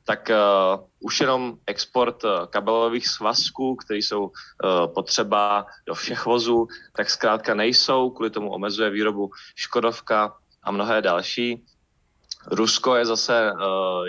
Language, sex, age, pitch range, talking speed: Czech, male, 20-39, 100-115 Hz, 130 wpm